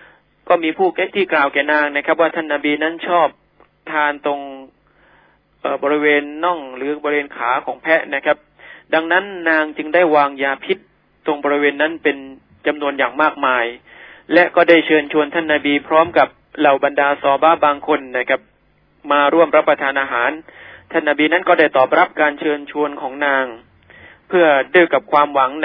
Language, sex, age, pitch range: Thai, male, 20-39, 140-165 Hz